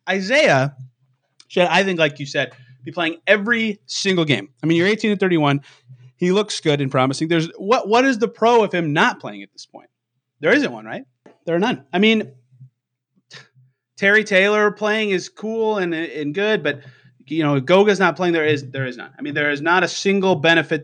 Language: English